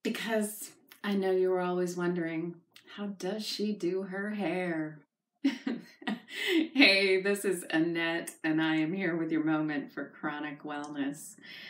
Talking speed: 140 wpm